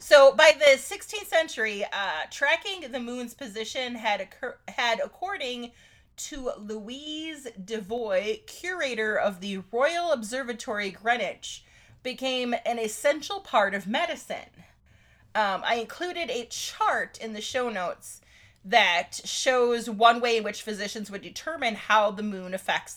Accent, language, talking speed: American, English, 130 wpm